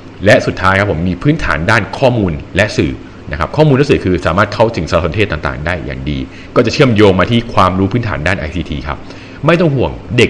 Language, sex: Thai, male